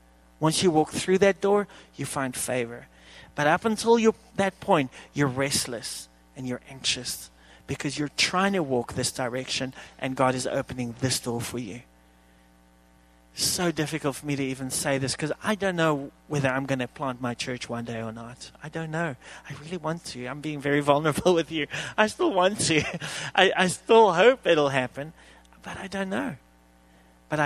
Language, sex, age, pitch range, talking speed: English, male, 30-49, 115-160 Hz, 185 wpm